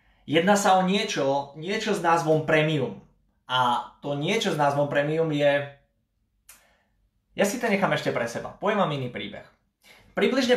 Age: 20-39